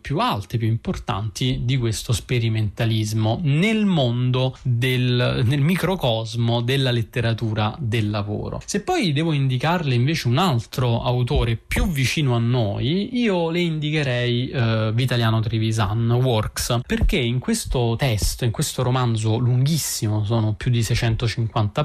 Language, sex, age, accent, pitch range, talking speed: Italian, male, 30-49, native, 115-155 Hz, 125 wpm